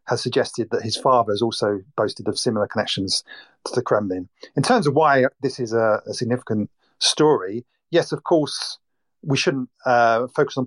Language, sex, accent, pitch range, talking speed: English, male, British, 115-150 Hz, 180 wpm